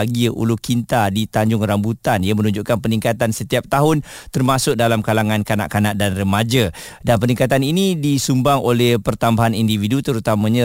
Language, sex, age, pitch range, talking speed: Malay, male, 40-59, 110-130 Hz, 135 wpm